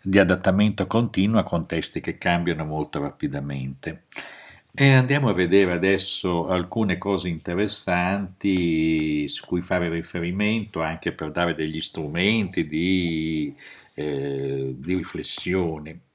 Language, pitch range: Italian, 80-100 Hz